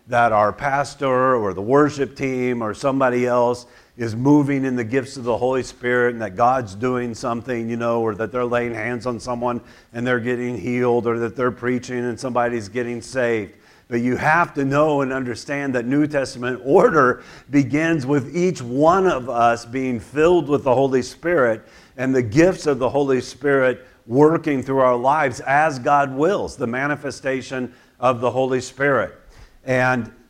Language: English